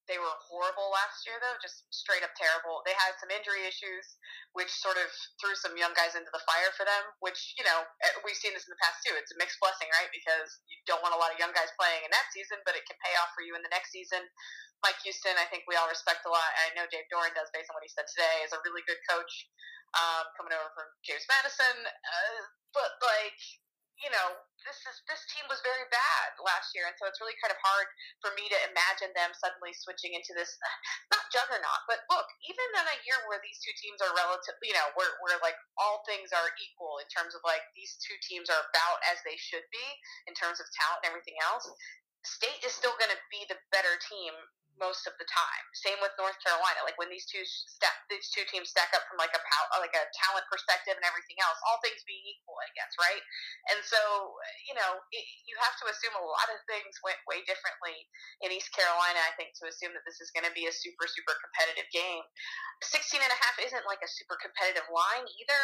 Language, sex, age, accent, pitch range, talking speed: English, female, 20-39, American, 170-215 Hz, 235 wpm